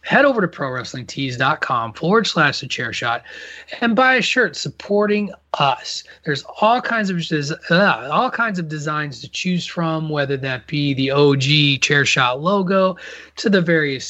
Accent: American